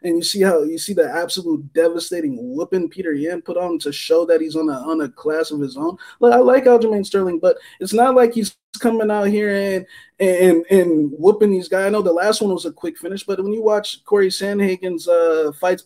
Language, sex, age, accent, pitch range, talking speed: English, male, 20-39, American, 165-215 Hz, 235 wpm